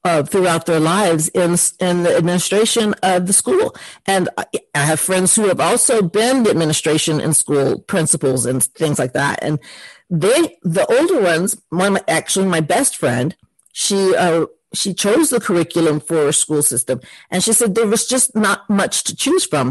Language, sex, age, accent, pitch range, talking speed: English, female, 50-69, American, 165-225 Hz, 180 wpm